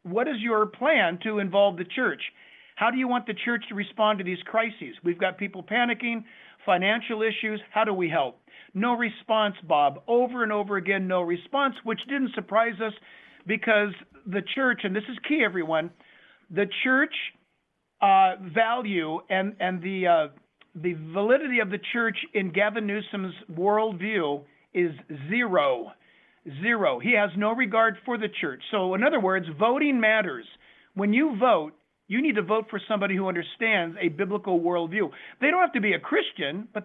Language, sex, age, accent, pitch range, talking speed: English, male, 50-69, American, 190-230 Hz, 170 wpm